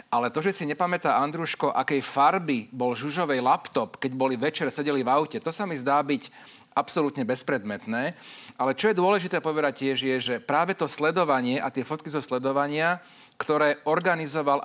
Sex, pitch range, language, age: male, 130-155 Hz, Slovak, 40-59